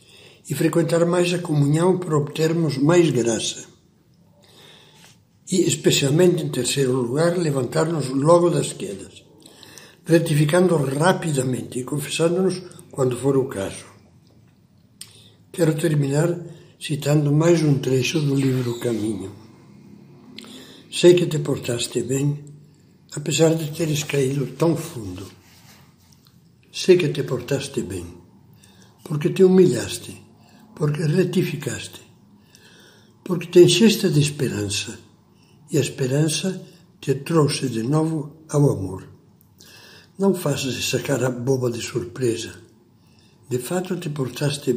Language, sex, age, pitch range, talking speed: Portuguese, male, 60-79, 125-170 Hz, 110 wpm